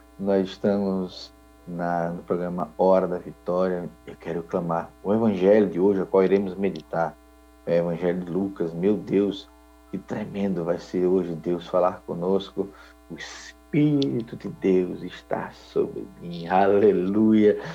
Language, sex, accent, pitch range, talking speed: Portuguese, male, Brazilian, 85-100 Hz, 140 wpm